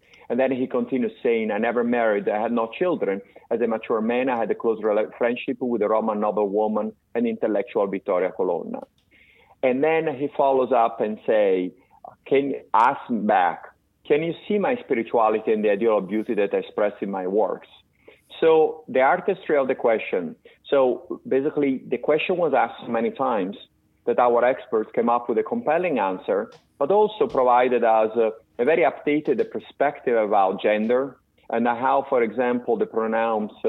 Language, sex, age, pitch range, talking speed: English, male, 40-59, 115-155 Hz, 175 wpm